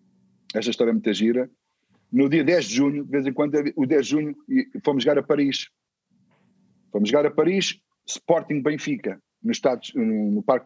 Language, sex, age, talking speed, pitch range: Portuguese, male, 50-69, 190 wpm, 120-180 Hz